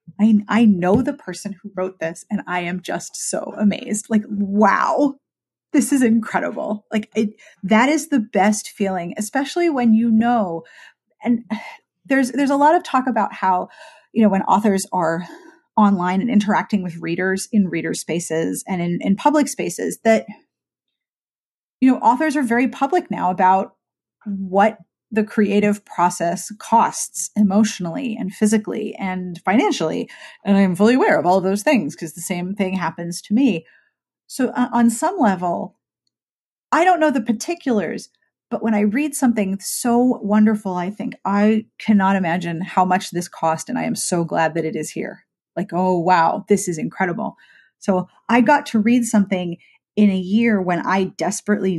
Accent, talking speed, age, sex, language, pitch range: American, 165 wpm, 30-49, female, English, 185-235 Hz